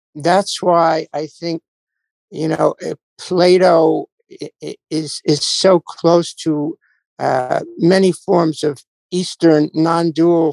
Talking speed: 105 wpm